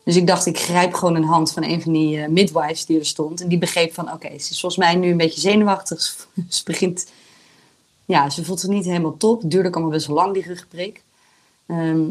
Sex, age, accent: female, 30-49, Dutch